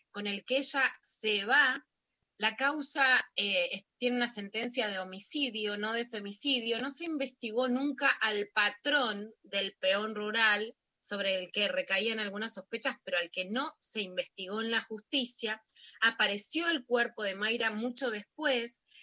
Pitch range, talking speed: 205-260 Hz, 150 wpm